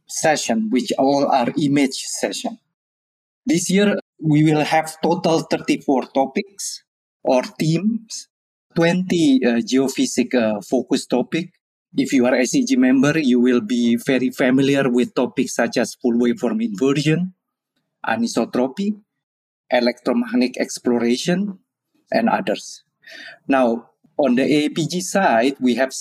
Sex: male